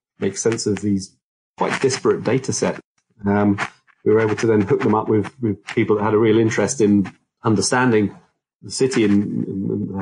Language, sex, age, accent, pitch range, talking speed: English, male, 30-49, British, 100-120 Hz, 185 wpm